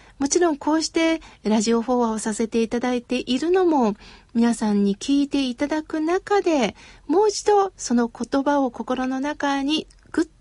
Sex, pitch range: female, 240-290 Hz